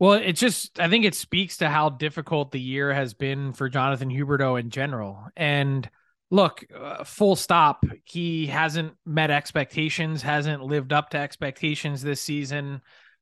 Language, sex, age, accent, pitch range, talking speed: English, male, 20-39, American, 135-165 Hz, 160 wpm